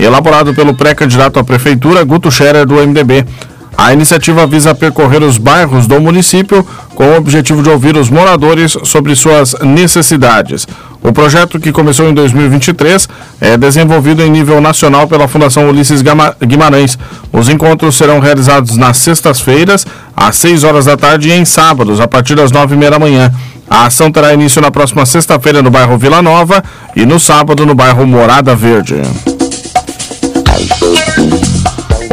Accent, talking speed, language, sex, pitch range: Brazilian, 155 wpm, Portuguese, male, 140-160 Hz